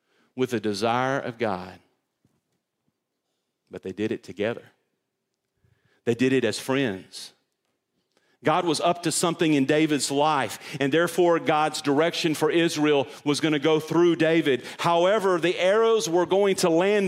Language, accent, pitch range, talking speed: English, American, 135-175 Hz, 150 wpm